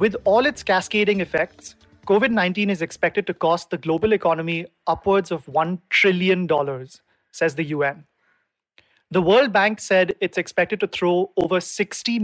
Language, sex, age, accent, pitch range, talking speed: English, male, 30-49, Indian, 165-200 Hz, 145 wpm